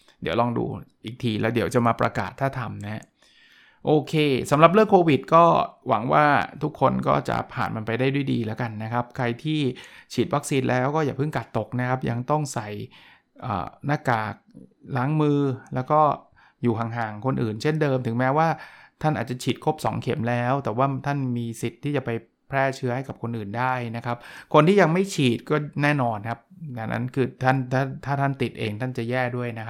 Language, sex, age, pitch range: Thai, male, 20-39, 120-145 Hz